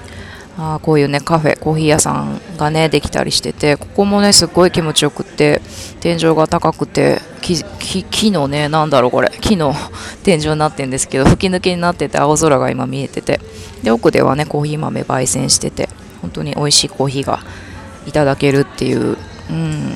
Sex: female